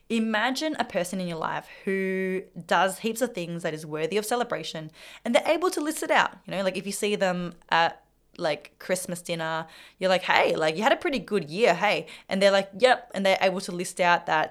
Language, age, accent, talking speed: English, 20-39, Australian, 230 wpm